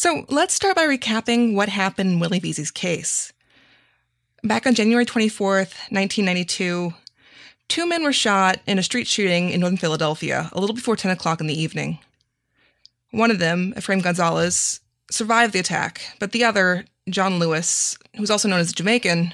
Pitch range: 180-240 Hz